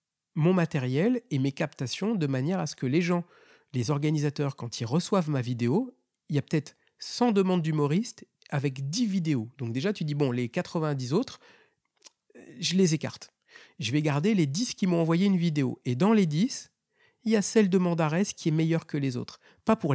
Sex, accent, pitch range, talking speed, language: male, French, 145-195 Hz, 205 wpm, French